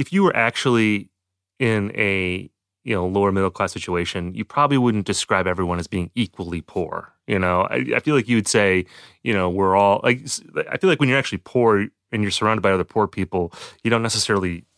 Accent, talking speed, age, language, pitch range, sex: American, 210 wpm, 30-49, English, 95-125 Hz, male